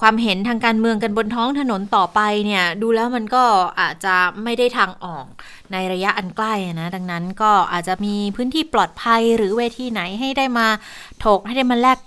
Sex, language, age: female, Thai, 20-39